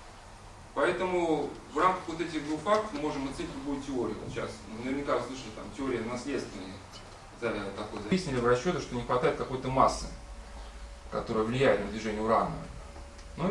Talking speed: 150 wpm